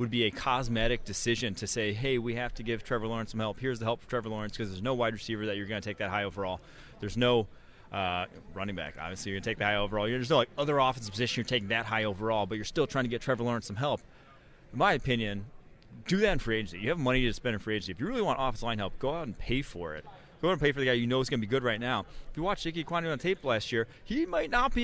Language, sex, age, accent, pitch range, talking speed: English, male, 30-49, American, 105-130 Hz, 305 wpm